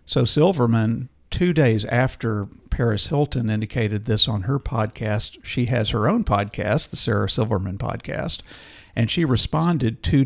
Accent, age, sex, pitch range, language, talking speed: American, 50-69, male, 105-130 Hz, English, 145 wpm